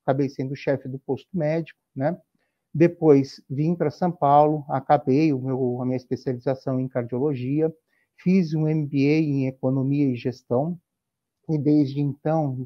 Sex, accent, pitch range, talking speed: male, Brazilian, 135-160 Hz, 145 wpm